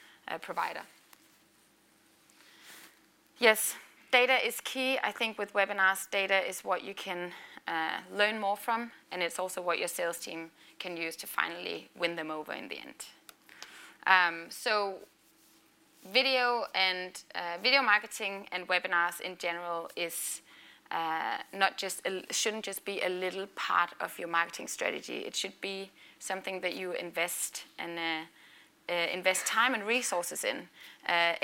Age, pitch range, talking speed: 20-39, 175-215 Hz, 150 wpm